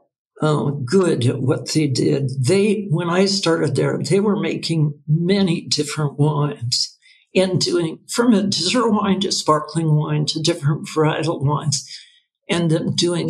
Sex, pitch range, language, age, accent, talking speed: male, 150-190 Hz, English, 60-79, American, 145 wpm